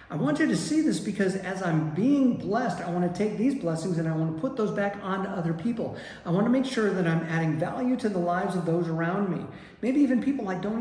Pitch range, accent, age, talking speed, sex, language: 175-230 Hz, American, 50-69, 250 wpm, male, English